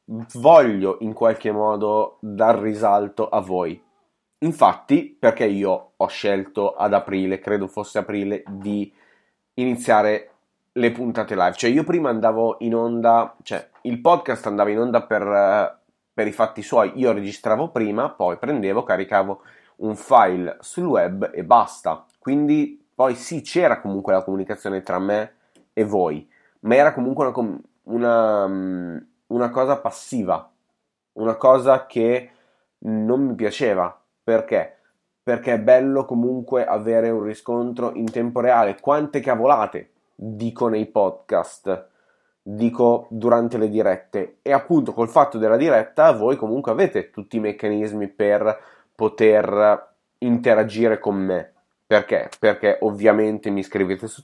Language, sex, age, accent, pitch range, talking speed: Italian, male, 30-49, native, 105-120 Hz, 135 wpm